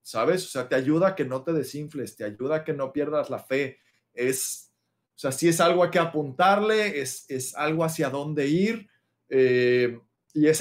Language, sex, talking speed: Spanish, male, 210 wpm